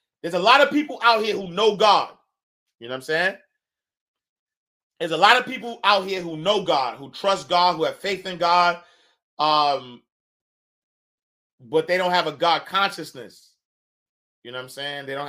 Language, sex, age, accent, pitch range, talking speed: English, male, 30-49, American, 125-180 Hz, 190 wpm